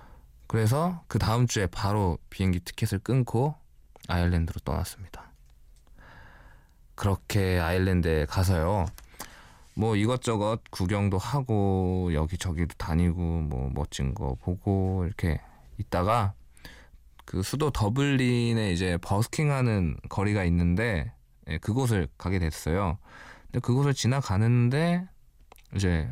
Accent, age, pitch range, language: native, 20-39, 85-120 Hz, Korean